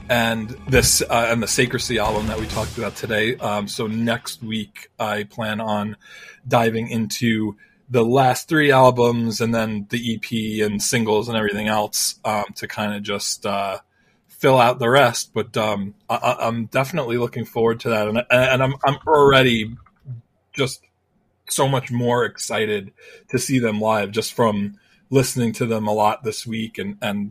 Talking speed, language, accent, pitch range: 175 wpm, English, American, 105-125 Hz